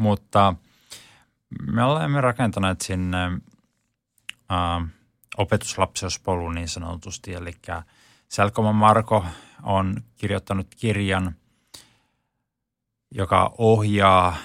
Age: 20-39